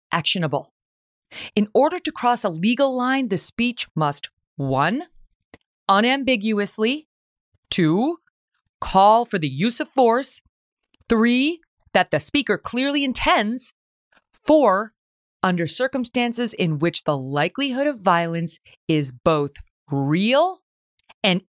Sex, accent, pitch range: female, American, 160-245 Hz